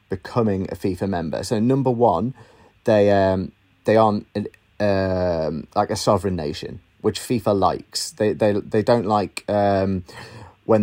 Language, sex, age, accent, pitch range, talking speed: English, male, 30-49, British, 95-115 Hz, 150 wpm